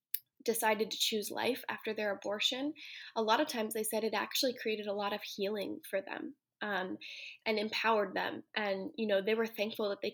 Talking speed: 200 wpm